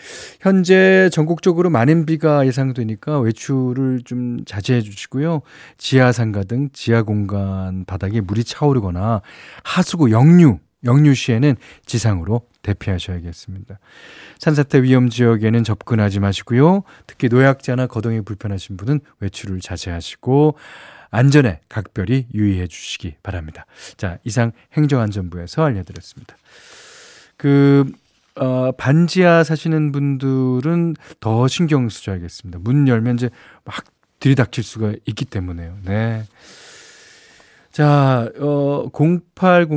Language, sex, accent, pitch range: Korean, male, native, 105-150 Hz